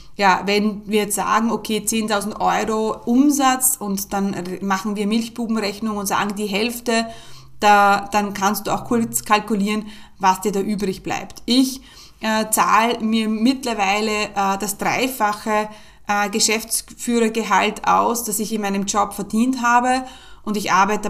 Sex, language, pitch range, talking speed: female, German, 200-235 Hz, 145 wpm